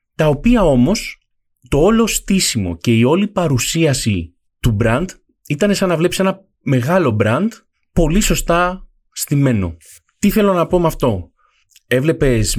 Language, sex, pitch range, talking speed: Greek, male, 105-165 Hz, 140 wpm